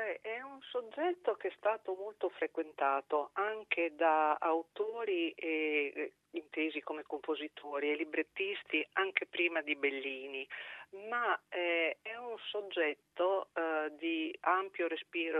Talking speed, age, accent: 115 wpm, 50-69, native